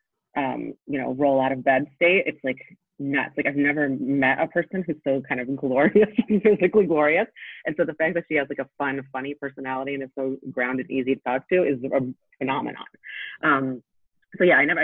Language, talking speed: English, 210 wpm